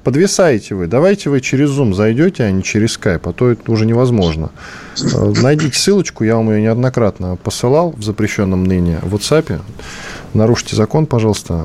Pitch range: 95-130 Hz